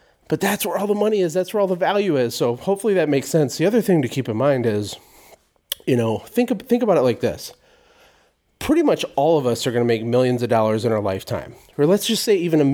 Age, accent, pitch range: 30-49, American, 115-175 Hz